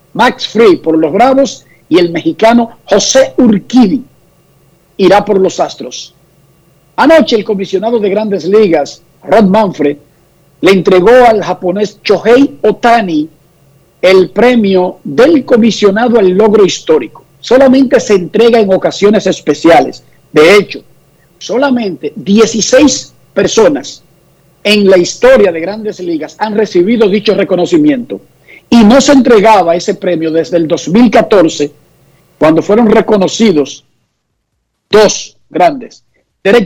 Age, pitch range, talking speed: 50-69, 160-220 Hz, 115 wpm